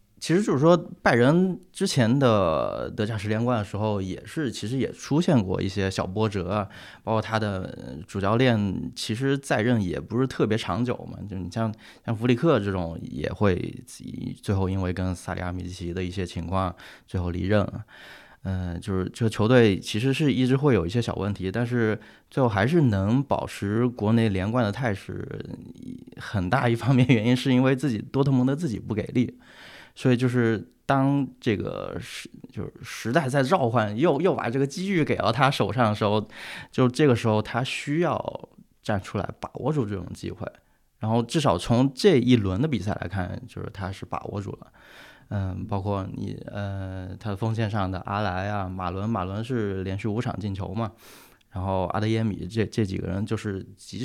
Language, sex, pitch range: Chinese, male, 95-125 Hz